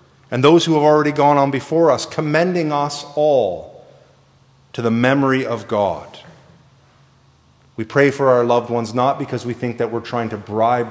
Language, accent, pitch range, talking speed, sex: English, American, 120-145 Hz, 175 wpm, male